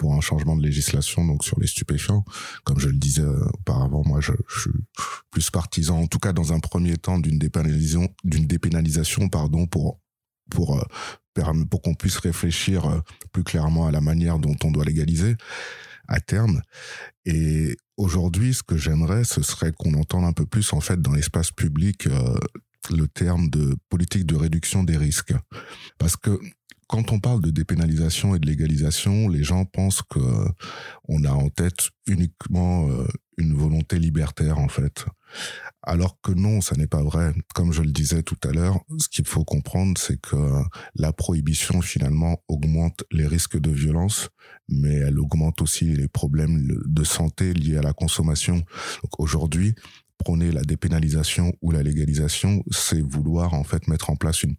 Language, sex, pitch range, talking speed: French, male, 75-90 Hz, 170 wpm